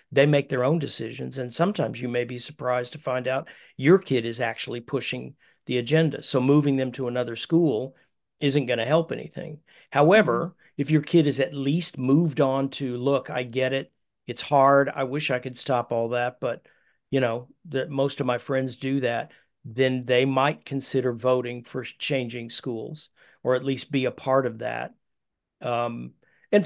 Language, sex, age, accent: English, male, 50-69, American